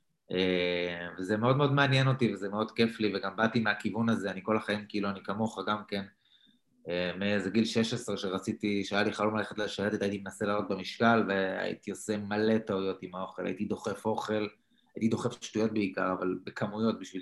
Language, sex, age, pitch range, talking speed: Hebrew, male, 20-39, 95-115 Hz, 180 wpm